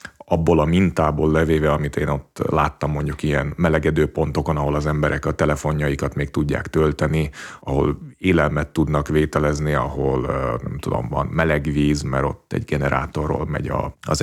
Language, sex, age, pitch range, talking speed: Hungarian, male, 30-49, 70-80 Hz, 150 wpm